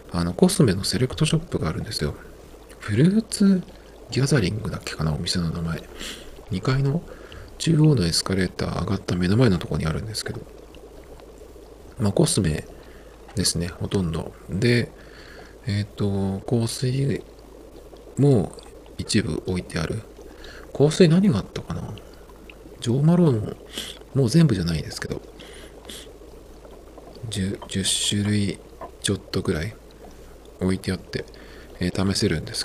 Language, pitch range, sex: Japanese, 90-140 Hz, male